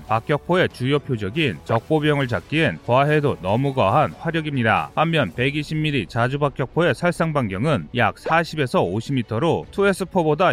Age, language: 30-49, Korean